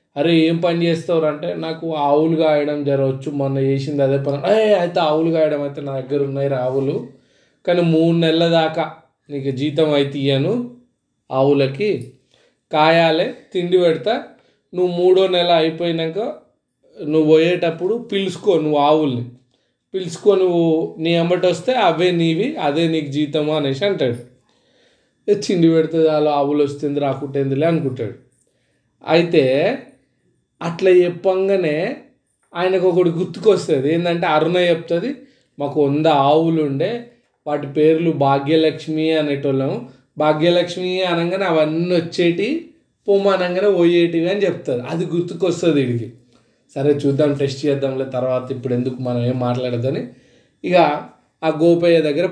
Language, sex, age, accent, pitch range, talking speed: Telugu, male, 20-39, native, 140-175 Hz, 110 wpm